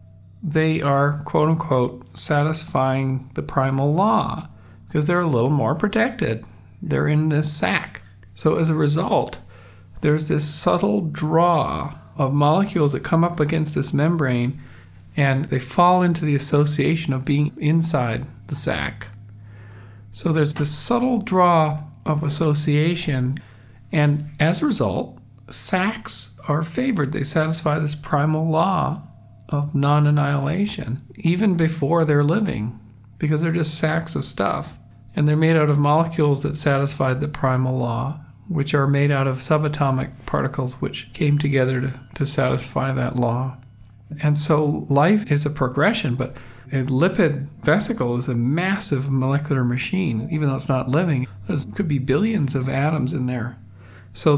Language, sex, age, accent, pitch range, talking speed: English, male, 50-69, American, 130-155 Hz, 145 wpm